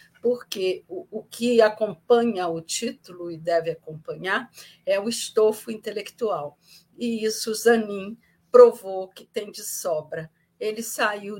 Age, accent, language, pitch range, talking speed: 50-69, Brazilian, Portuguese, 170-230 Hz, 120 wpm